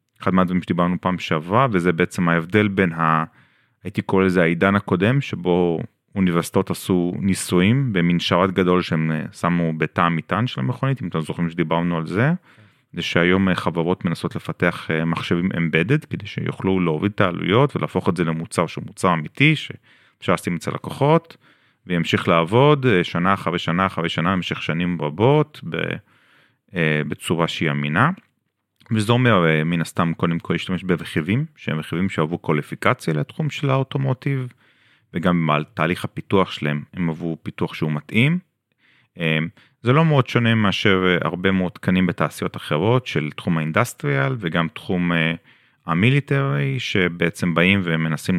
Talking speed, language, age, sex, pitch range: 135 wpm, Hebrew, 30-49, male, 85-115 Hz